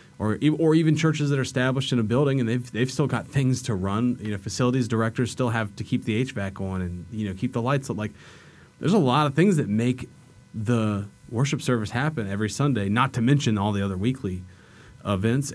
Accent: American